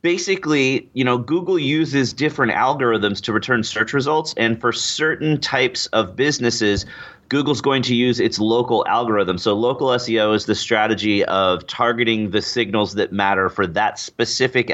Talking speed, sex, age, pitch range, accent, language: 160 wpm, male, 30-49, 105-135 Hz, American, English